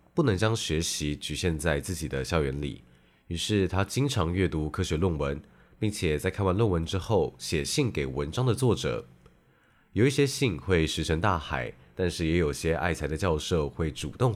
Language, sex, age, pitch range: Chinese, male, 20-39, 75-95 Hz